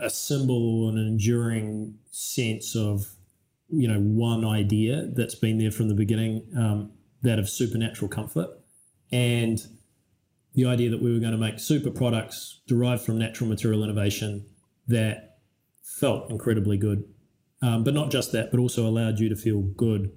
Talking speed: 160 wpm